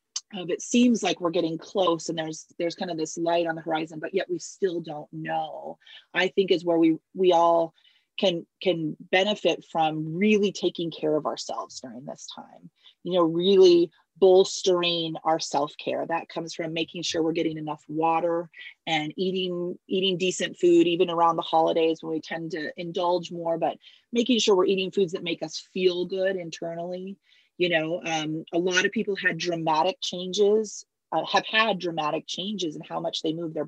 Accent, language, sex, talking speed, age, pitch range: American, English, female, 185 wpm, 30-49, 165-195 Hz